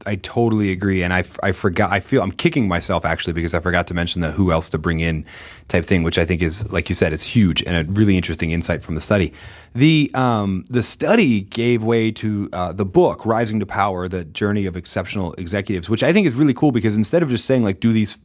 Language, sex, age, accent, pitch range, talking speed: English, male, 30-49, American, 90-115 Hz, 245 wpm